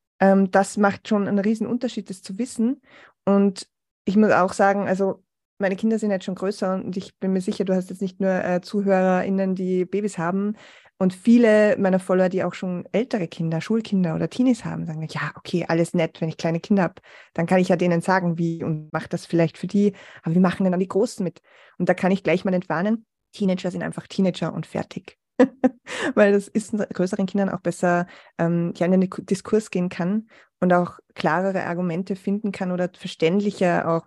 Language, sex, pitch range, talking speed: German, female, 180-205 Hz, 205 wpm